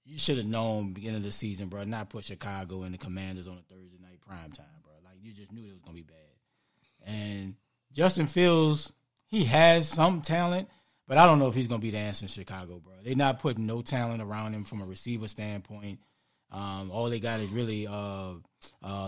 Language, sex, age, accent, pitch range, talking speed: English, male, 20-39, American, 100-125 Hz, 225 wpm